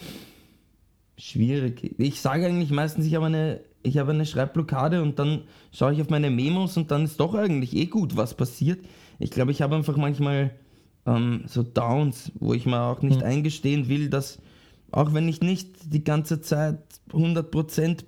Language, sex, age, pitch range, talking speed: German, male, 20-39, 120-155 Hz, 175 wpm